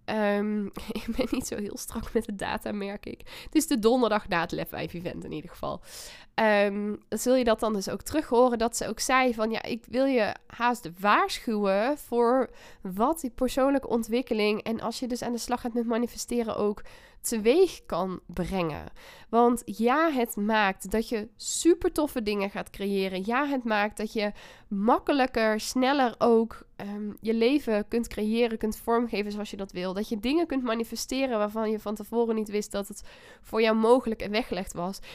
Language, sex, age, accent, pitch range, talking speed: Dutch, female, 10-29, Dutch, 215-260 Hz, 190 wpm